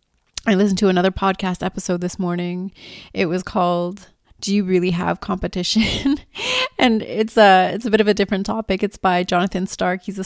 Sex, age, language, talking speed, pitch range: female, 30-49, English, 185 wpm, 180-210 Hz